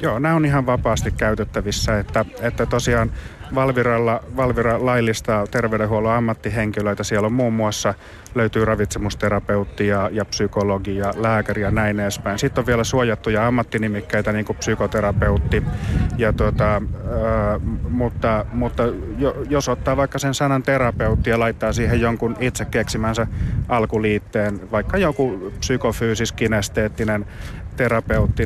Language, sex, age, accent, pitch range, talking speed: Finnish, male, 30-49, native, 105-120 Hz, 120 wpm